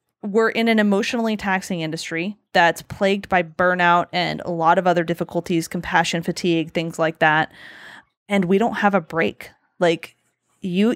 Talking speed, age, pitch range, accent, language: 160 wpm, 30-49, 170-190 Hz, American, English